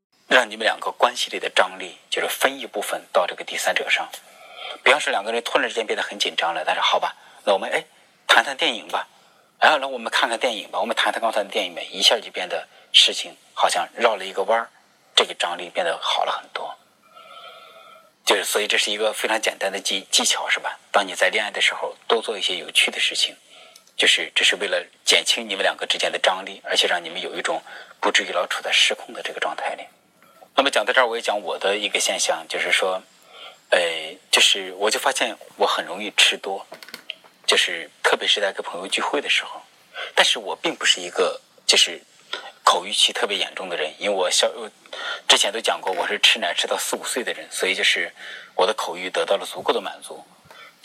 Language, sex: Chinese, male